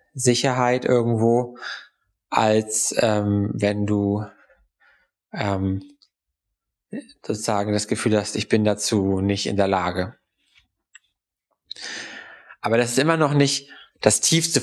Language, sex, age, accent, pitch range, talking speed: German, male, 20-39, German, 100-130 Hz, 105 wpm